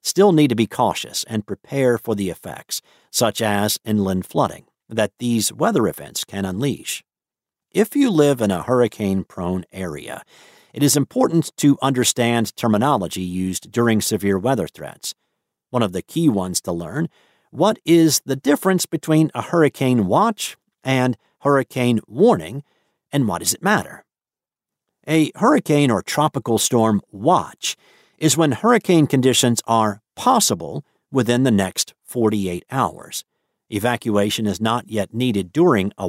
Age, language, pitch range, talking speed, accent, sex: 50-69, English, 105-145 Hz, 140 wpm, American, male